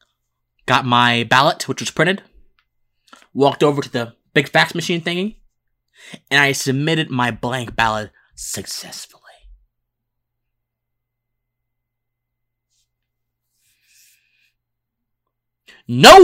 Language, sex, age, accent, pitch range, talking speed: English, male, 20-39, American, 120-155 Hz, 80 wpm